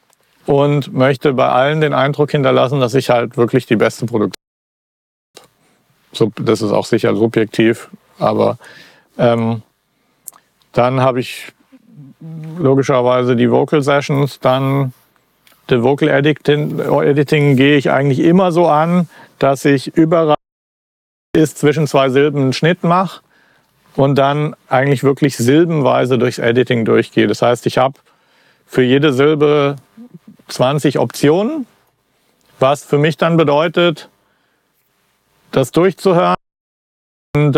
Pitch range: 130-155 Hz